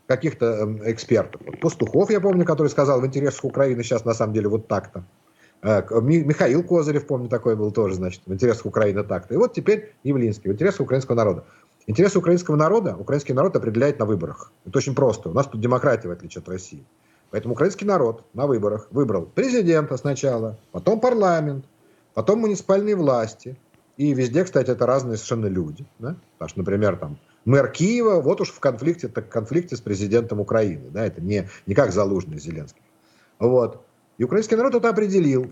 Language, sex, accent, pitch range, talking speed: Russian, male, native, 105-160 Hz, 170 wpm